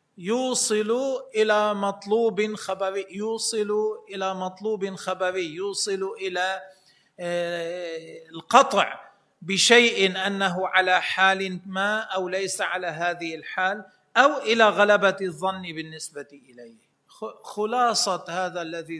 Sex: male